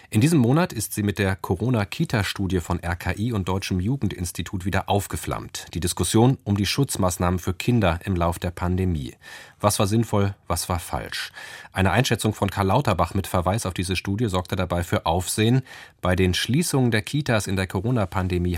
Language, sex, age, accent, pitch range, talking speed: German, male, 30-49, German, 90-110 Hz, 175 wpm